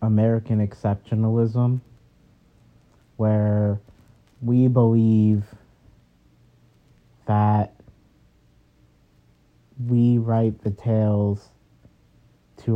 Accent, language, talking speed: American, English, 50 wpm